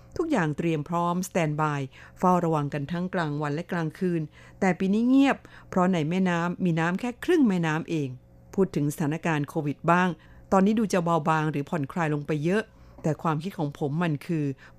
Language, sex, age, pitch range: Thai, female, 50-69, 150-190 Hz